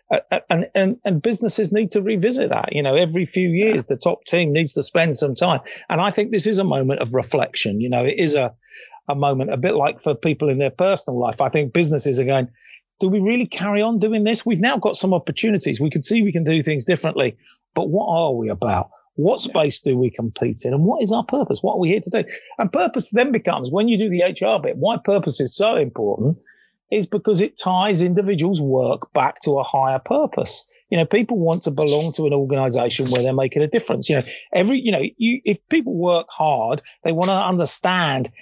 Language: English